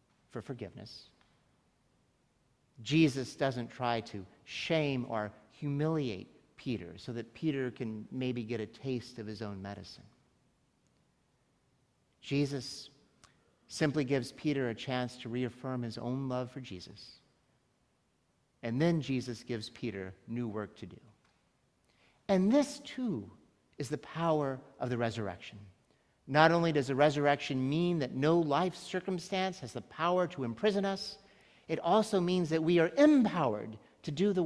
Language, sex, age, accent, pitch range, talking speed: English, male, 50-69, American, 120-165 Hz, 140 wpm